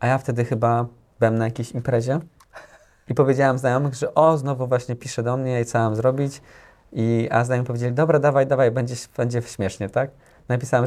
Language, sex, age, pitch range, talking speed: Polish, male, 20-39, 110-125 Hz, 190 wpm